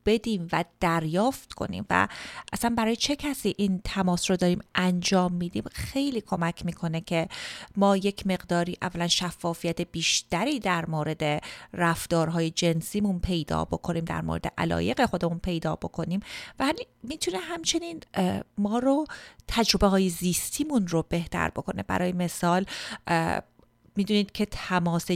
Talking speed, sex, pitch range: 130 wpm, female, 170-215 Hz